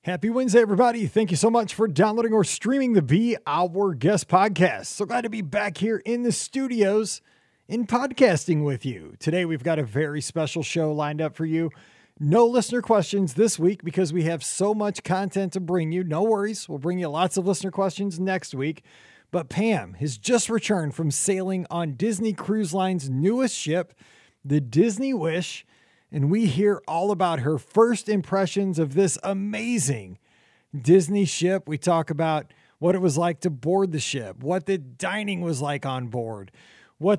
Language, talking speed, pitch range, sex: English, 180 wpm, 155-205 Hz, male